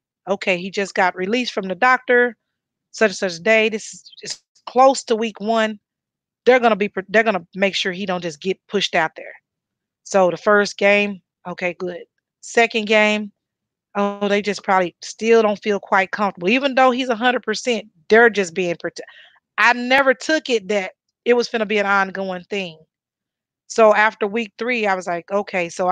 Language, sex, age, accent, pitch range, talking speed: English, female, 30-49, American, 185-225 Hz, 185 wpm